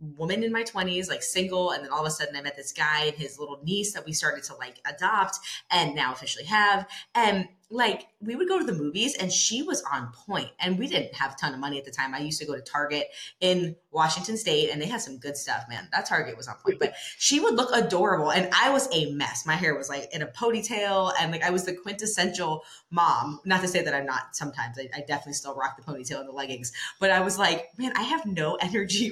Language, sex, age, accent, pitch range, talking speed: English, female, 20-39, American, 145-205 Hz, 260 wpm